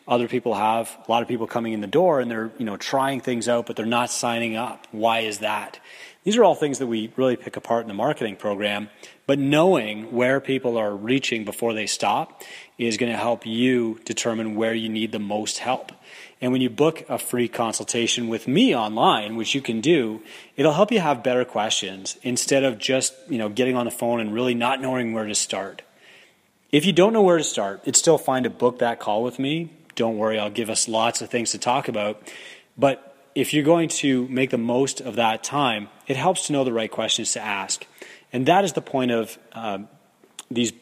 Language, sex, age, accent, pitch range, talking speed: English, male, 30-49, American, 110-130 Hz, 220 wpm